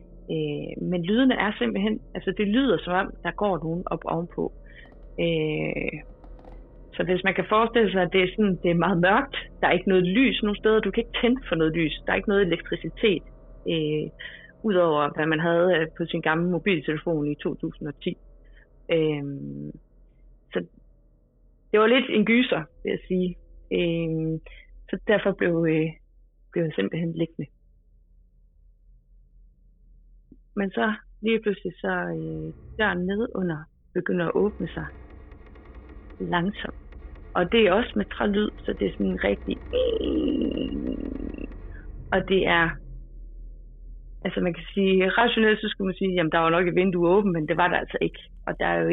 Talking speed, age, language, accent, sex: 160 wpm, 30-49, Danish, native, female